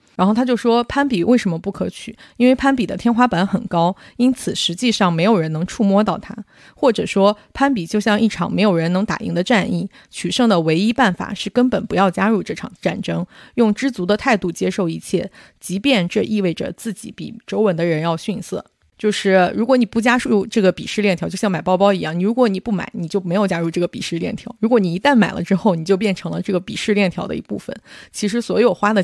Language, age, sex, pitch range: Chinese, 30-49, female, 180-230 Hz